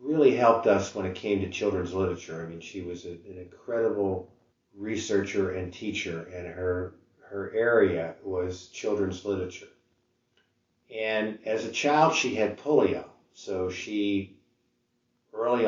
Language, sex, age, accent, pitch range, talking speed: English, male, 50-69, American, 90-115 Hz, 135 wpm